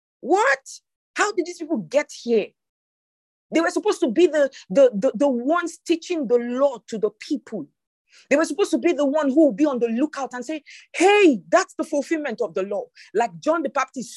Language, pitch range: English, 185-300 Hz